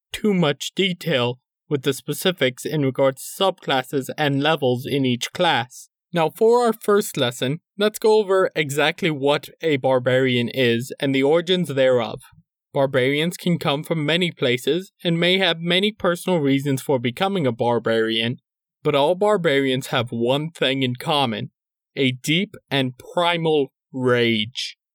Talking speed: 145 wpm